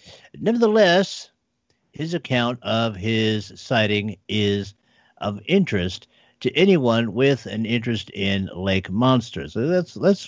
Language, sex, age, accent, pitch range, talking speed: English, male, 50-69, American, 100-140 Hz, 115 wpm